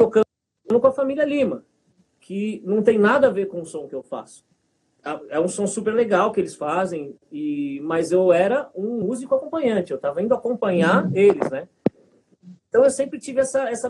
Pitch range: 165-230 Hz